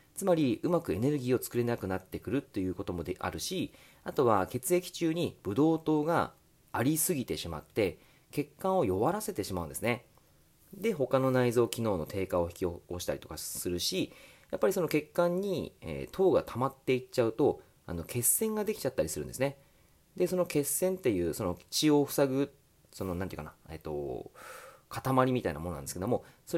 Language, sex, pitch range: Japanese, male, 95-155 Hz